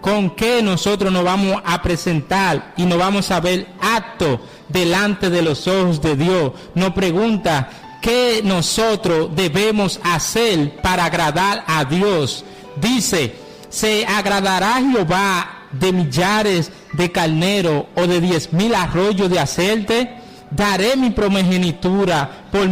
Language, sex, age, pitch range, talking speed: English, male, 50-69, 170-205 Hz, 125 wpm